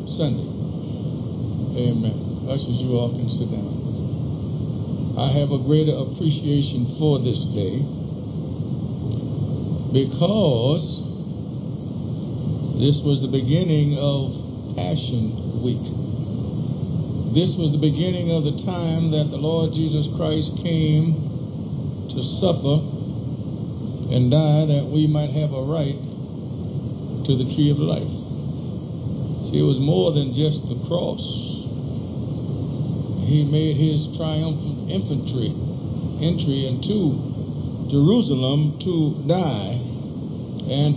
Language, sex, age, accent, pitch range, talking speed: English, male, 50-69, American, 135-155 Hz, 105 wpm